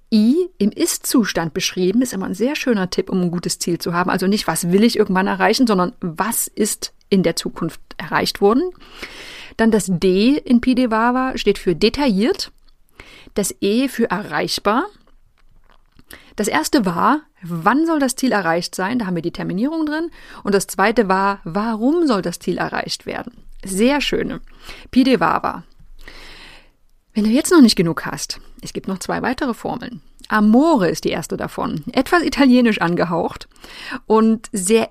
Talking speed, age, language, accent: 160 wpm, 30-49, German, German